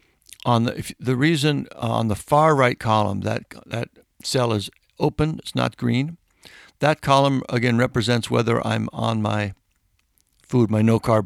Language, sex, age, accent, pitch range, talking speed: English, male, 60-79, American, 105-135 Hz, 160 wpm